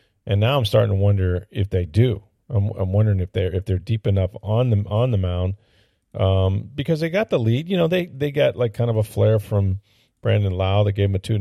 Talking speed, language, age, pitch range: 245 wpm, English, 40-59, 100-125 Hz